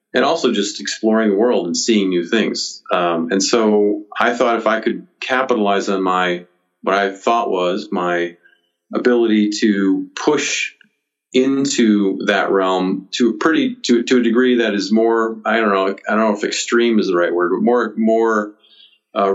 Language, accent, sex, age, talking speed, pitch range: English, American, male, 40-59, 180 wpm, 95-120 Hz